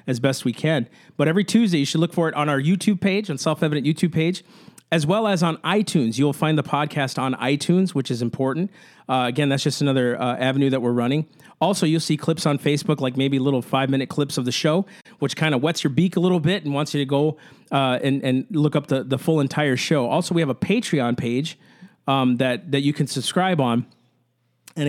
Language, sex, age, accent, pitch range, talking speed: English, male, 40-59, American, 130-160 Hz, 235 wpm